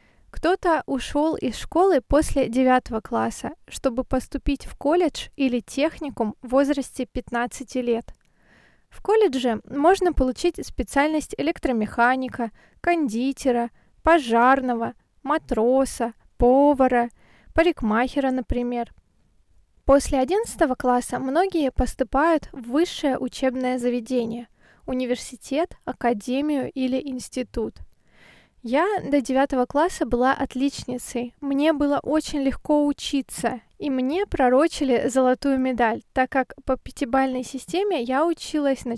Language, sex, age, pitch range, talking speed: Russian, female, 20-39, 250-290 Hz, 100 wpm